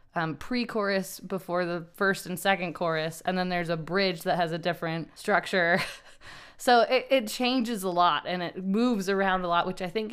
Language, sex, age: English, female, 20-39